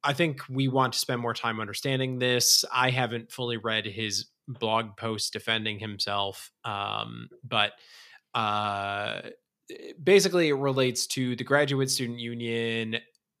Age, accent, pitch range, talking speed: 20-39, American, 105-130 Hz, 135 wpm